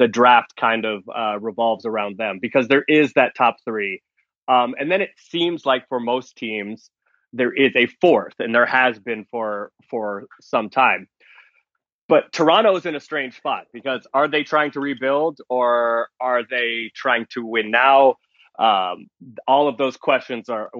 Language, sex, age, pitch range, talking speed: English, male, 20-39, 115-140 Hz, 175 wpm